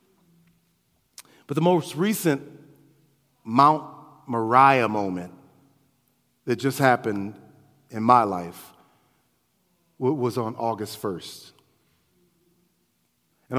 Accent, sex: American, male